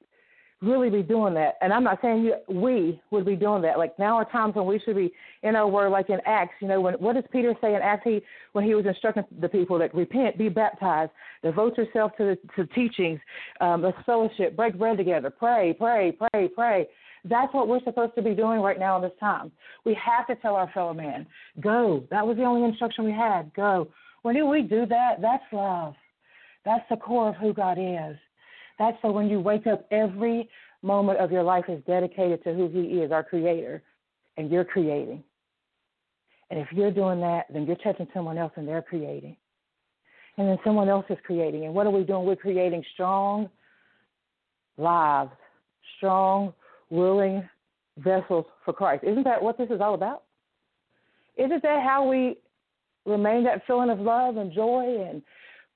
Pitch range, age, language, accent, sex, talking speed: 180-230 Hz, 40-59, English, American, female, 195 wpm